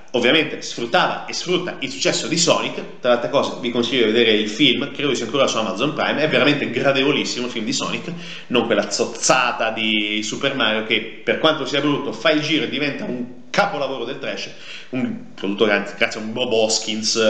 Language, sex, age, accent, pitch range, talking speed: Italian, male, 30-49, native, 120-180 Hz, 200 wpm